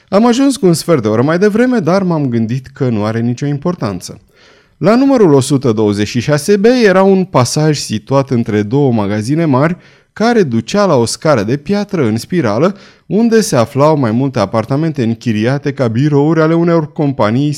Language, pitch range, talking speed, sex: Romanian, 120-175 Hz, 165 wpm, male